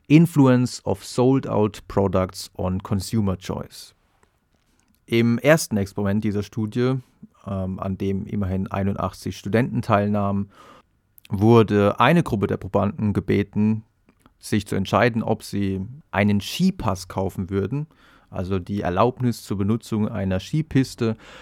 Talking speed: 115 wpm